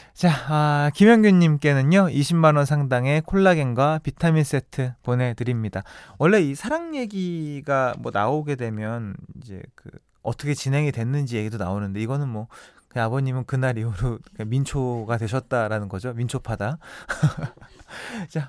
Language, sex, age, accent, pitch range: Korean, male, 20-39, native, 120-170 Hz